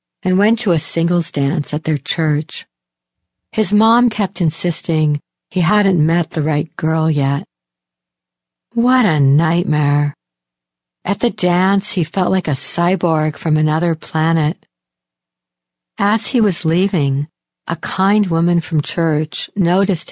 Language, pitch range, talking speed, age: English, 145-185 Hz, 130 wpm, 60-79